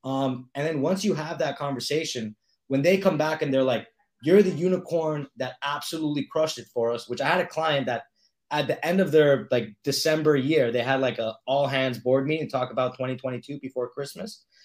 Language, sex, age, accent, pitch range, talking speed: English, male, 20-39, American, 130-175 Hz, 215 wpm